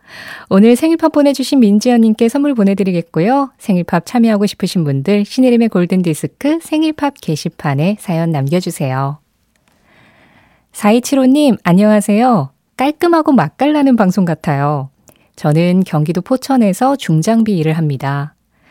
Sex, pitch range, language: female, 165-240 Hz, Korean